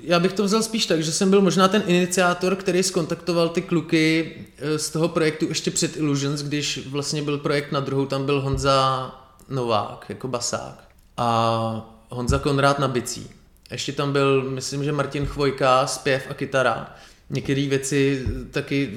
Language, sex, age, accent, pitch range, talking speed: Czech, male, 20-39, native, 135-165 Hz, 165 wpm